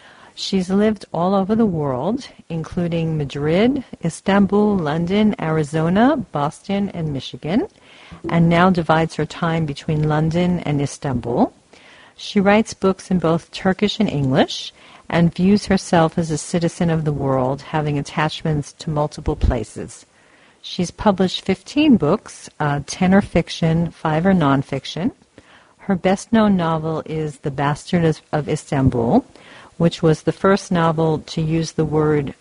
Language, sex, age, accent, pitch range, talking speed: English, female, 50-69, American, 145-180 Hz, 135 wpm